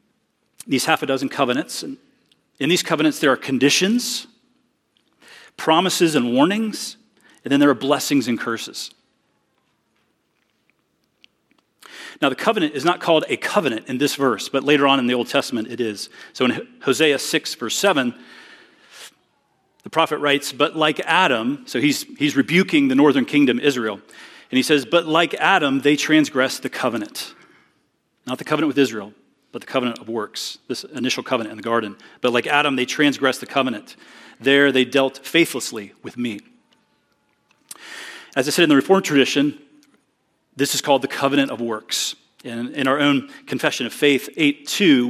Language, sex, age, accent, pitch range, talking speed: English, male, 40-59, American, 130-180 Hz, 165 wpm